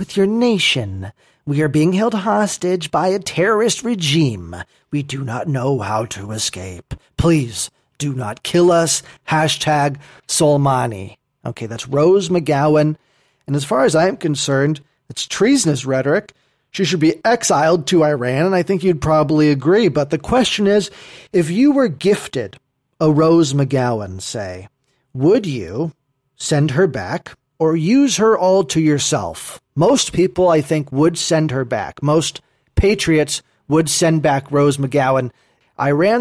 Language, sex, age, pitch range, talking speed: English, male, 40-59, 135-180 Hz, 150 wpm